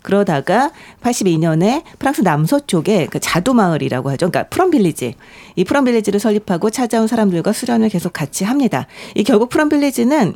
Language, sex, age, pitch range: Korean, female, 40-59, 165-225 Hz